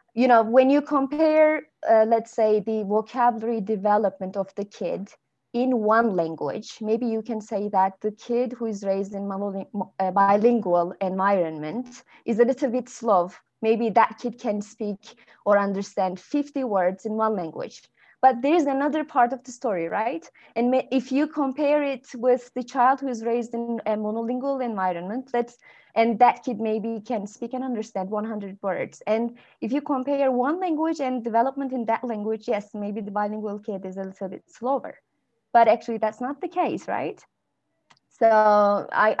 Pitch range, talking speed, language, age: 200-250 Hz, 175 wpm, English, 20-39